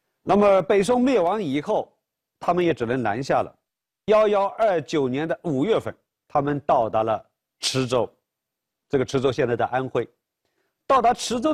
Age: 50-69